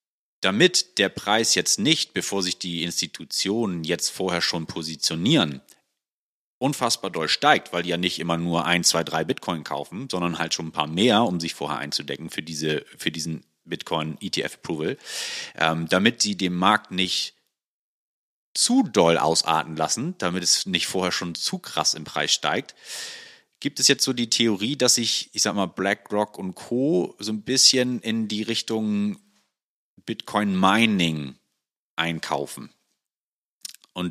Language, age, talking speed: German, 30-49, 155 wpm